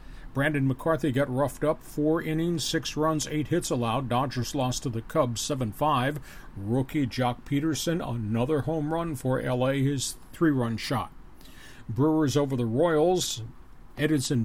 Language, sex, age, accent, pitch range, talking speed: English, male, 50-69, American, 125-150 Hz, 140 wpm